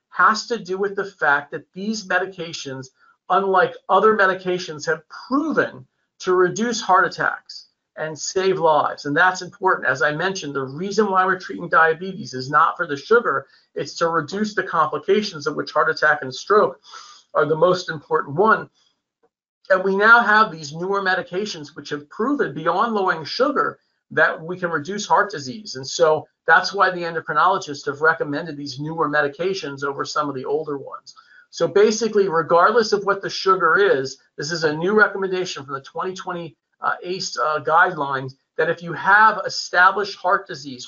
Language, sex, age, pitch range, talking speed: English, male, 40-59, 155-205 Hz, 170 wpm